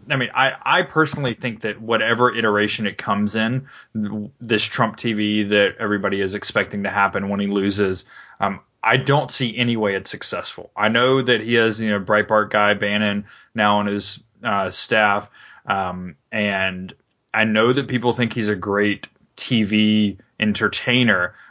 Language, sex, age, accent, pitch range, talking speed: English, male, 20-39, American, 100-120 Hz, 165 wpm